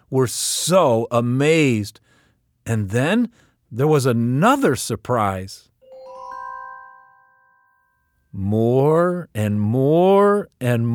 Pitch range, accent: 105-160 Hz, American